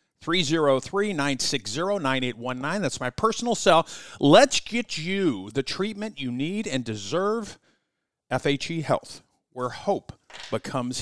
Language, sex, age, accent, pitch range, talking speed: English, male, 50-69, American, 120-195 Hz, 100 wpm